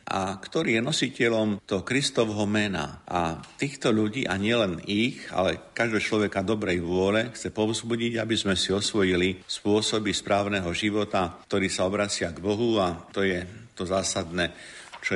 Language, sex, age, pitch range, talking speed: Slovak, male, 50-69, 90-105 Hz, 150 wpm